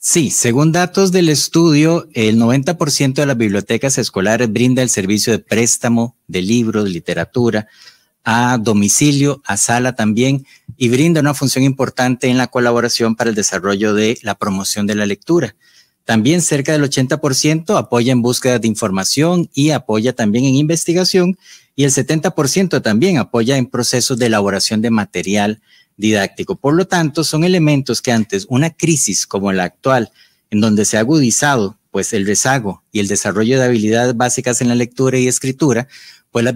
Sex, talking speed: male, 165 wpm